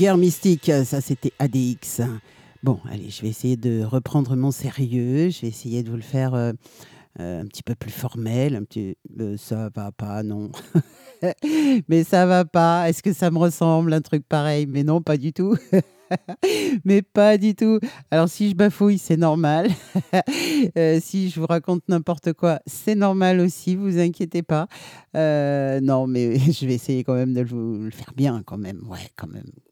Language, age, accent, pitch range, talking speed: French, 50-69, French, 130-175 Hz, 185 wpm